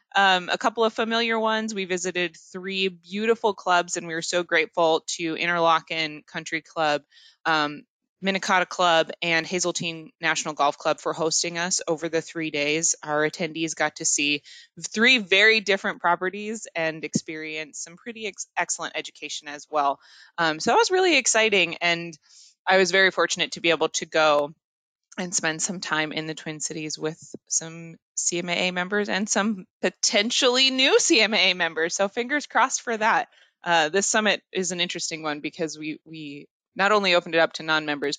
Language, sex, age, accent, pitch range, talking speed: English, female, 20-39, American, 155-195 Hz, 170 wpm